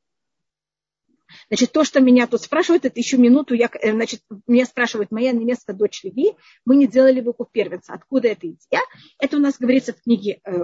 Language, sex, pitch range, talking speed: Russian, female, 215-270 Hz, 175 wpm